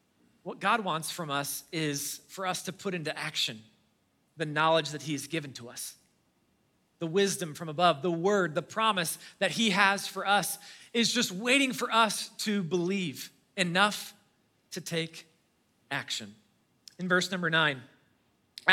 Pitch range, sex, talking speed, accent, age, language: 170-235 Hz, male, 155 wpm, American, 40-59, English